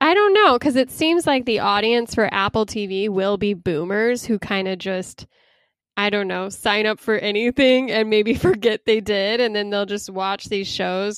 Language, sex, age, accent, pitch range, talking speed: English, female, 10-29, American, 205-260 Hz, 205 wpm